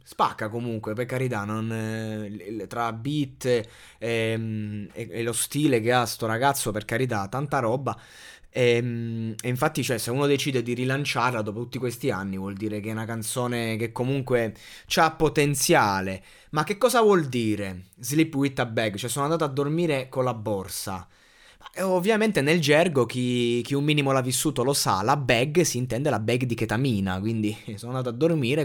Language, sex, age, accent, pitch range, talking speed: Italian, male, 20-39, native, 110-140 Hz, 180 wpm